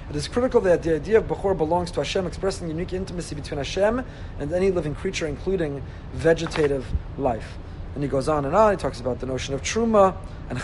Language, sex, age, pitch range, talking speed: English, male, 30-49, 135-190 Hz, 210 wpm